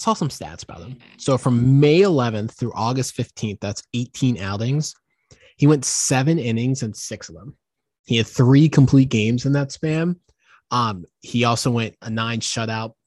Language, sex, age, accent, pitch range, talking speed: English, male, 20-39, American, 110-135 Hz, 175 wpm